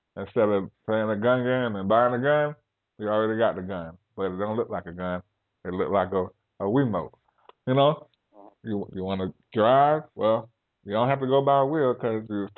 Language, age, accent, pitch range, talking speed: English, 20-39, American, 105-145 Hz, 225 wpm